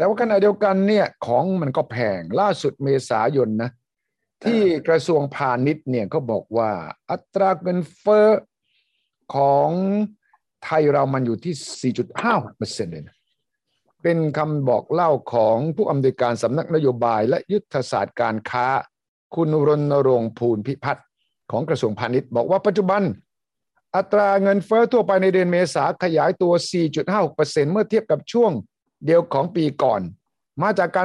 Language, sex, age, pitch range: Thai, male, 60-79, 140-195 Hz